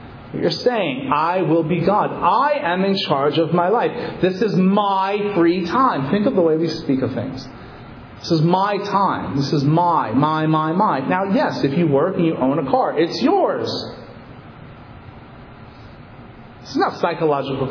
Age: 40-59